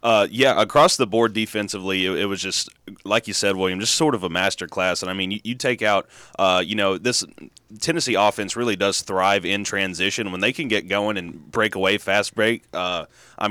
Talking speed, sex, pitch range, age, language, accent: 220 wpm, male, 100-115 Hz, 30-49, English, American